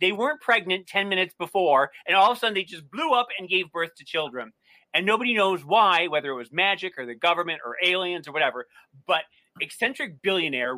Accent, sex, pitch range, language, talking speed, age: American, male, 150-190 Hz, English, 210 wpm, 40-59